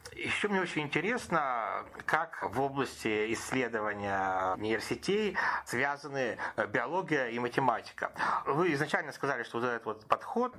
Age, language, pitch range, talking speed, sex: 30-49, Russian, 105-135 Hz, 120 wpm, male